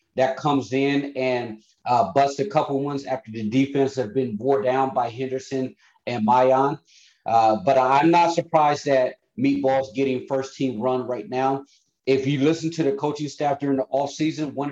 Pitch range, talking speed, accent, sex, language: 130-150 Hz, 180 wpm, American, male, English